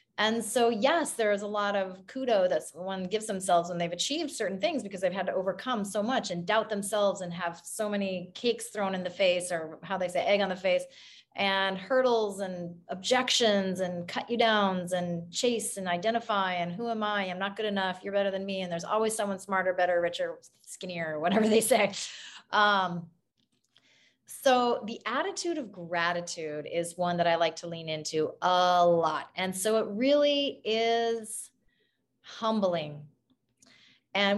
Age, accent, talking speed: 30-49, American, 180 wpm